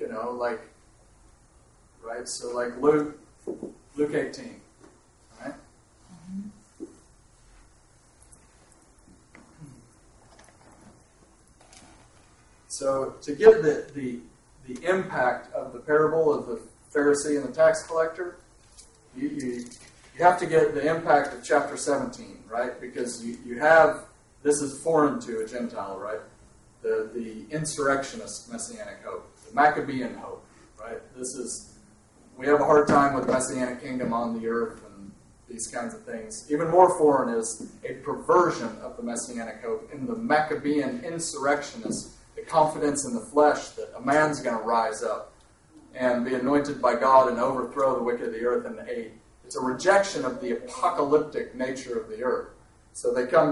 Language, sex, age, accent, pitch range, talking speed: English, male, 40-59, American, 120-160 Hz, 145 wpm